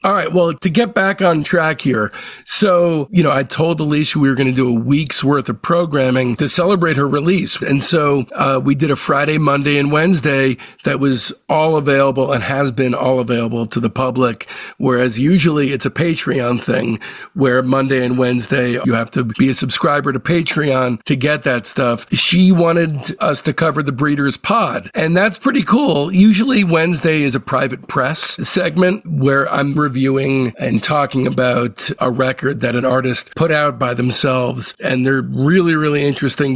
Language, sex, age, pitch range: English, male, 50-69, 130-160 Hz